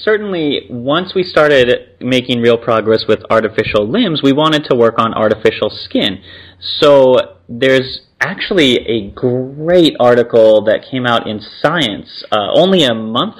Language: English